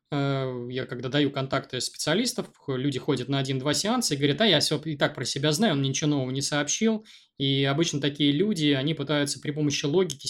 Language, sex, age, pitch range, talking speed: Russian, male, 20-39, 135-155 Hz, 200 wpm